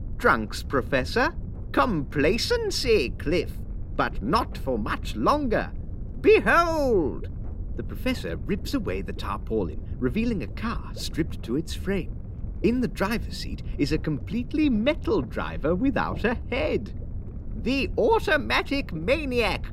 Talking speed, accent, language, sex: 115 wpm, British, English, male